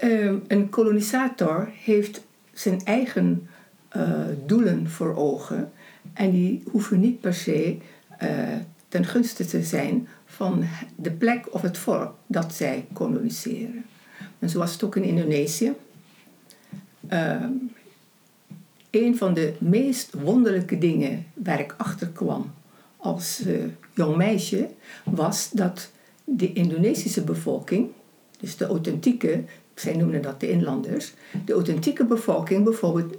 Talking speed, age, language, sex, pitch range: 125 wpm, 60-79, Dutch, female, 175-225 Hz